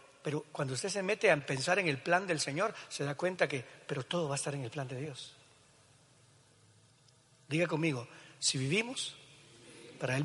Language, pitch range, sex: Spanish, 130-160 Hz, male